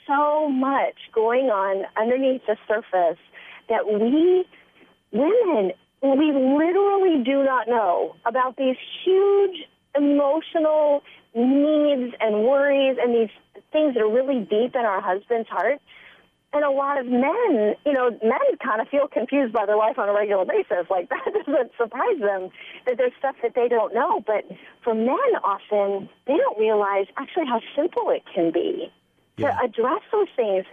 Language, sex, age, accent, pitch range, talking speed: English, female, 40-59, American, 225-300 Hz, 160 wpm